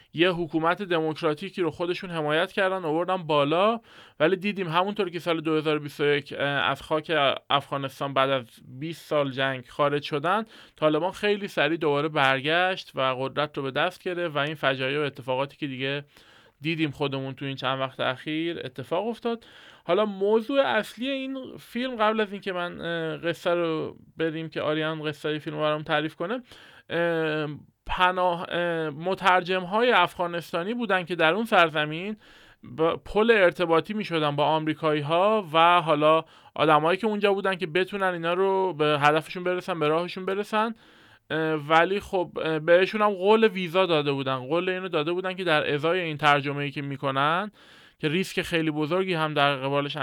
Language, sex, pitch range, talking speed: Persian, male, 150-185 Hz, 155 wpm